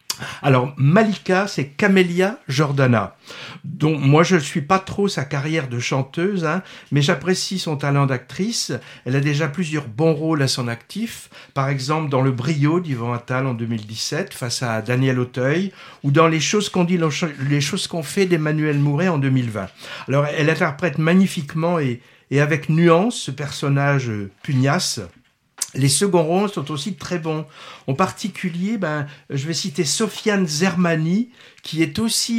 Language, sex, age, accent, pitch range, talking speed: French, male, 60-79, French, 140-185 Hz, 165 wpm